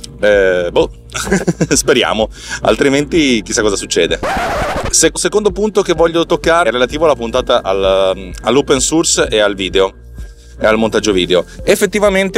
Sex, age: male, 30-49